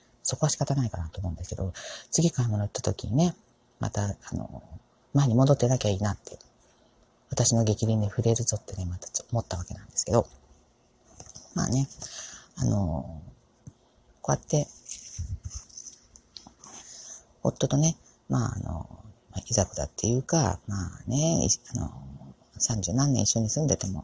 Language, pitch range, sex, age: Japanese, 105-145 Hz, female, 40-59